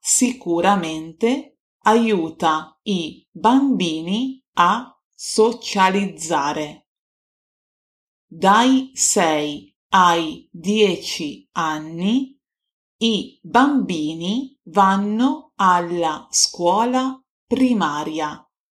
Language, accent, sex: Italian, native, female